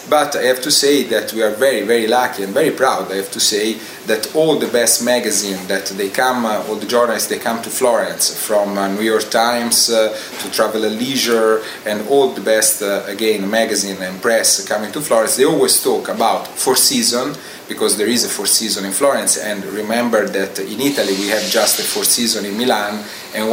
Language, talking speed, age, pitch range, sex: English, 205 wpm, 30-49, 100-125 Hz, male